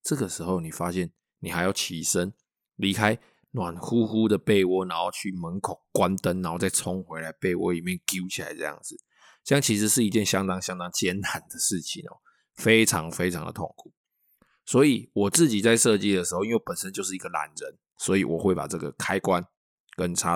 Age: 20-39